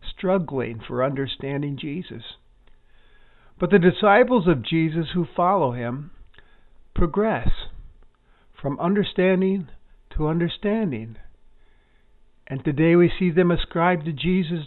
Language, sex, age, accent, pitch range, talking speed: English, male, 50-69, American, 110-170 Hz, 100 wpm